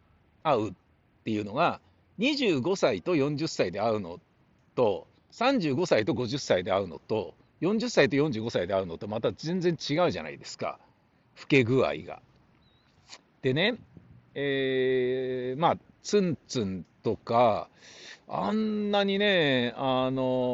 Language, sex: Japanese, male